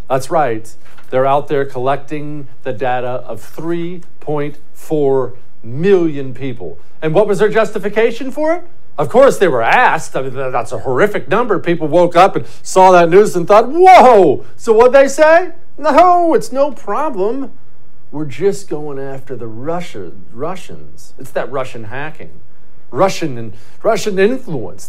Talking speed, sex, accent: 150 wpm, male, American